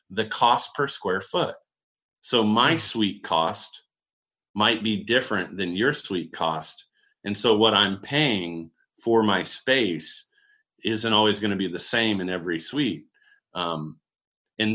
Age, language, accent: 30-49, English, American